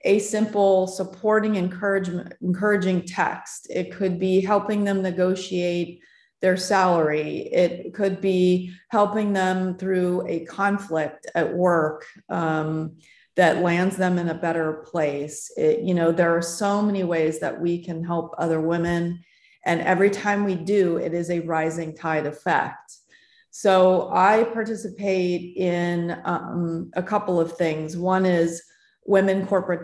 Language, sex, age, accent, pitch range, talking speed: English, female, 30-49, American, 165-195 Hz, 140 wpm